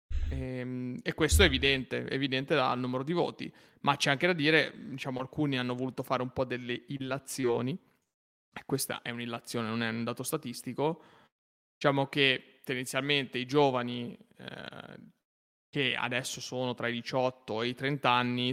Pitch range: 120-135 Hz